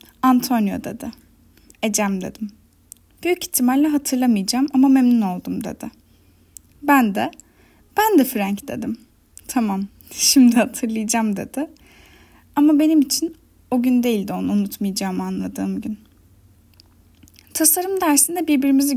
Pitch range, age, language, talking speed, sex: 215-285 Hz, 10-29, Turkish, 110 wpm, female